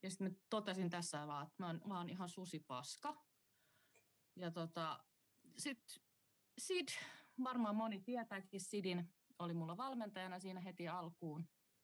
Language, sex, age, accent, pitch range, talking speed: Finnish, female, 30-49, native, 155-210 Hz, 130 wpm